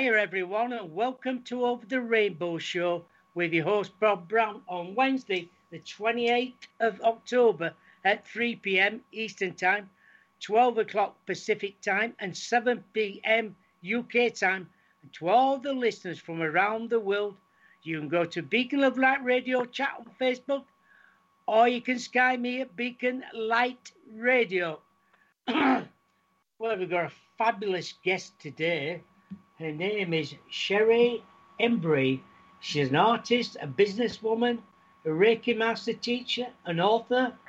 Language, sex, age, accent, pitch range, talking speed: English, male, 60-79, British, 185-240 Hz, 135 wpm